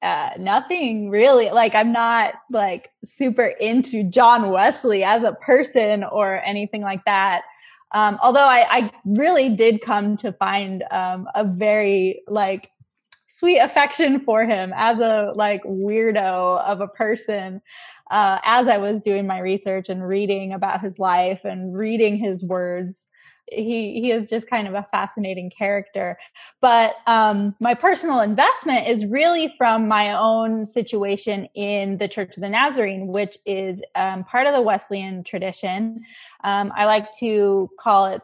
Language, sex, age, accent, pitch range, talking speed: English, female, 10-29, American, 195-230 Hz, 155 wpm